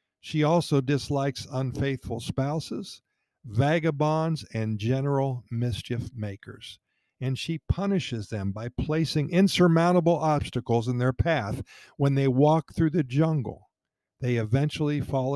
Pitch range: 120-155 Hz